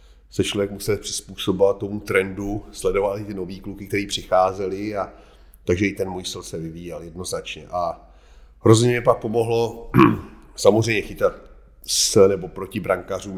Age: 40-59